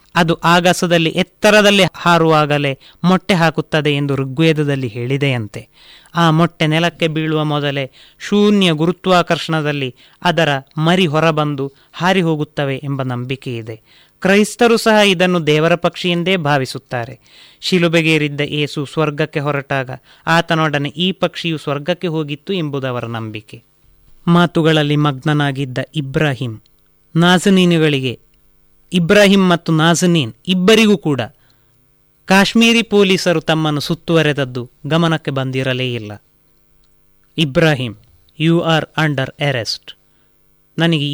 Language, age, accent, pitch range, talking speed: Kannada, 30-49, native, 135-170 Hz, 90 wpm